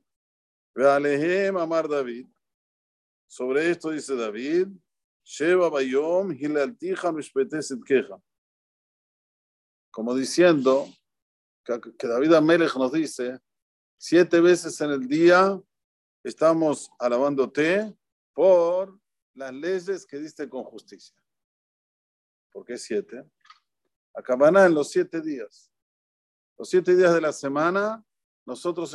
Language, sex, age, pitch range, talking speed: Spanish, male, 50-69, 130-175 Hz, 95 wpm